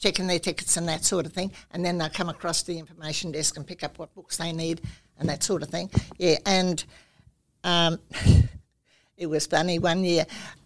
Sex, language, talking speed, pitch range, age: female, English, 205 wpm, 165-195 Hz, 60-79